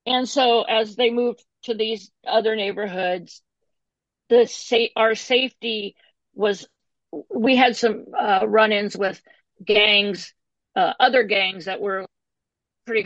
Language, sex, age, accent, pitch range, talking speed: English, female, 50-69, American, 200-245 Hz, 125 wpm